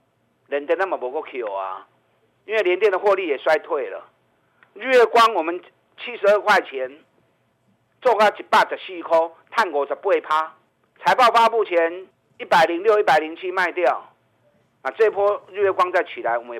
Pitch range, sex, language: 165-225 Hz, male, Chinese